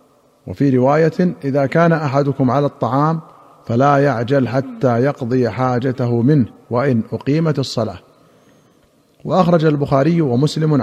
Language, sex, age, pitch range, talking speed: Arabic, male, 50-69, 125-145 Hz, 105 wpm